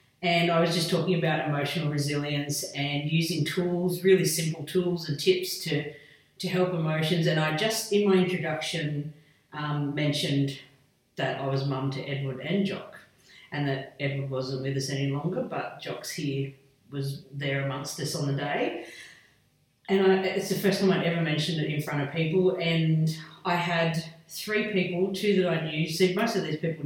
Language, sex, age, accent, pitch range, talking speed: English, female, 40-59, Australian, 140-170 Hz, 180 wpm